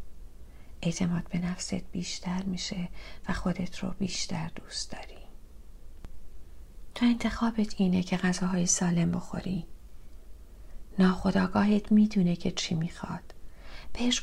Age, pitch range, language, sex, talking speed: 40-59, 175-205 Hz, English, female, 100 wpm